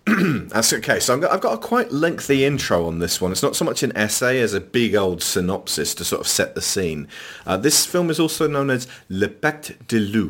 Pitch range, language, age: 85-110 Hz, English, 40-59